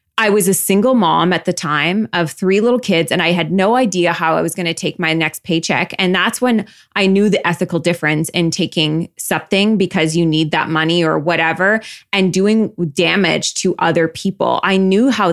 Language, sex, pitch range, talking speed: English, female, 175-225 Hz, 210 wpm